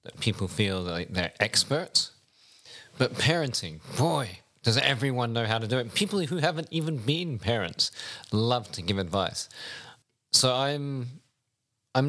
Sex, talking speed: male, 145 wpm